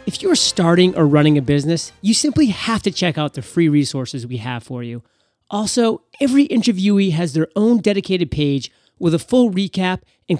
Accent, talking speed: American, 190 wpm